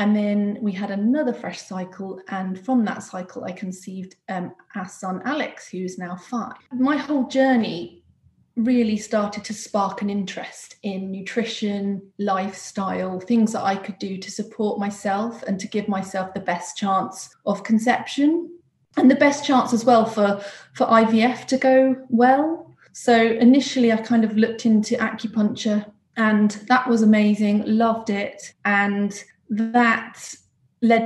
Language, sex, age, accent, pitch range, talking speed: English, female, 30-49, British, 200-240 Hz, 155 wpm